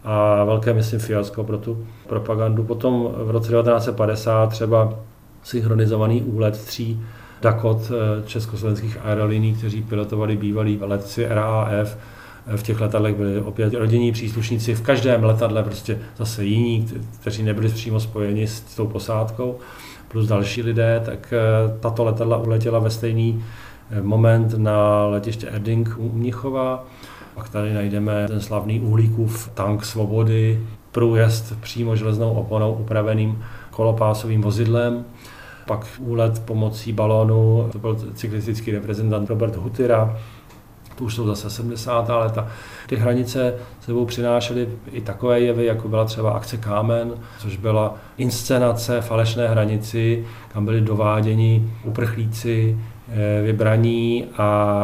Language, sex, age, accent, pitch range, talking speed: Czech, male, 40-59, native, 110-115 Hz, 125 wpm